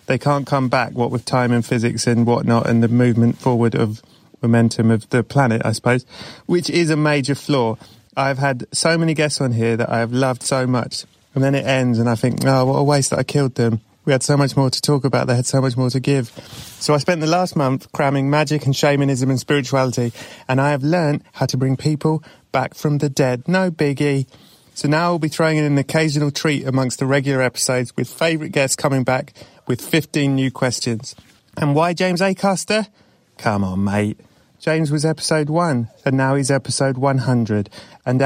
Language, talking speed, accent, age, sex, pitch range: English, 210 wpm, British, 30-49, male, 125-150 Hz